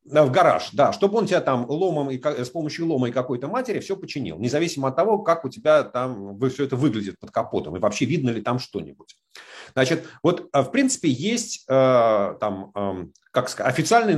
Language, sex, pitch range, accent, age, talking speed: Russian, male, 125-185 Hz, native, 40-59, 175 wpm